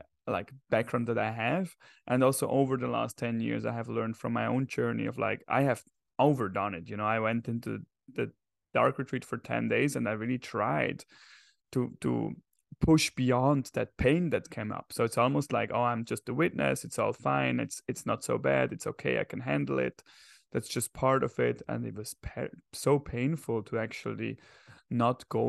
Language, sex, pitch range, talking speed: English, male, 110-130 Hz, 200 wpm